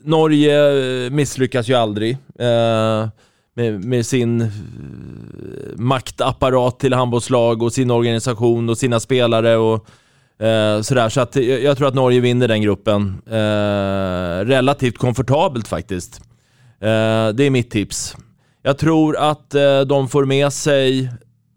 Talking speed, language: 130 wpm, Swedish